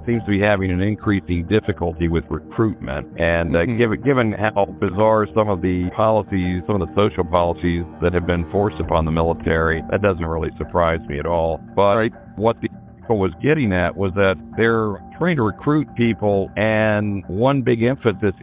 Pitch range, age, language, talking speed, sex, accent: 85-110 Hz, 60-79, English, 180 wpm, male, American